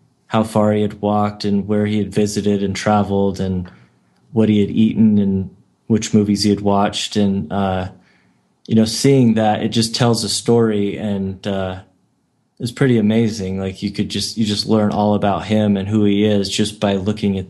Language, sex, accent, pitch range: English, male, American, 95-110 Hz